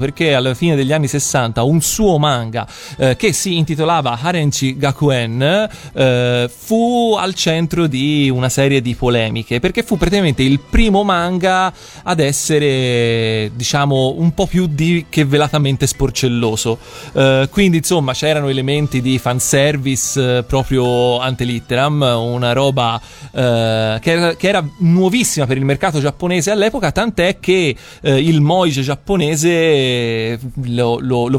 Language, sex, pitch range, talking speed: Italian, male, 125-170 Hz, 135 wpm